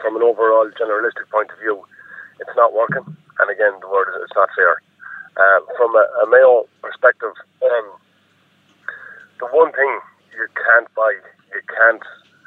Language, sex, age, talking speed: English, male, 30-49, 160 wpm